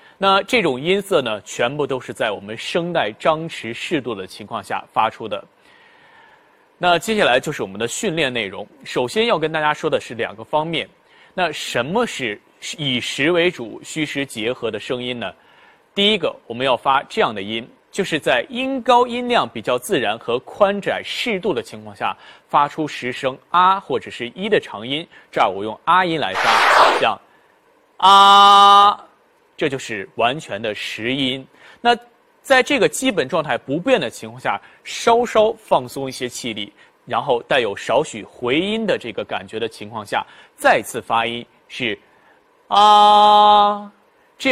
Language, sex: Chinese, male